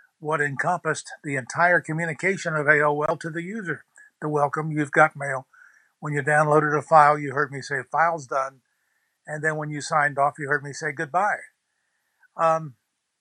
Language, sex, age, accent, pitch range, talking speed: English, male, 60-79, American, 150-180 Hz, 175 wpm